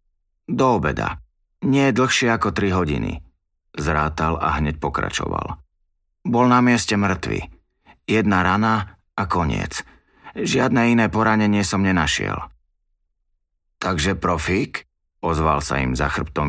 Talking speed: 115 wpm